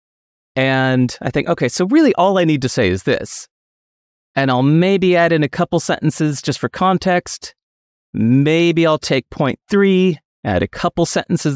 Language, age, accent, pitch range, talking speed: English, 30-49, American, 130-185 Hz, 170 wpm